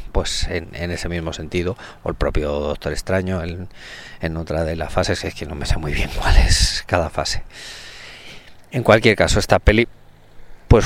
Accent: Spanish